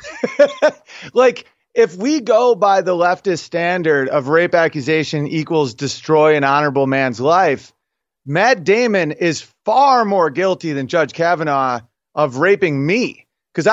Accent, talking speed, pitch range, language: American, 130 wpm, 150-215 Hz, English